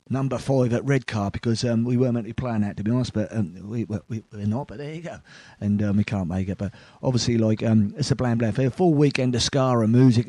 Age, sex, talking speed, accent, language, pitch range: 30-49, male, 280 wpm, British, English, 110-130 Hz